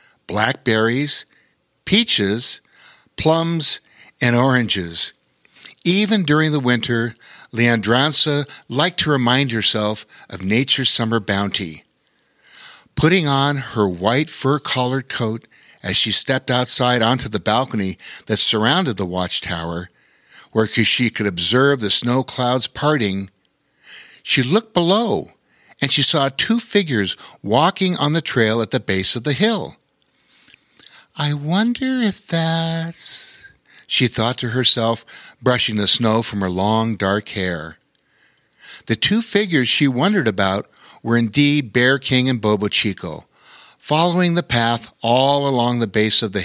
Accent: American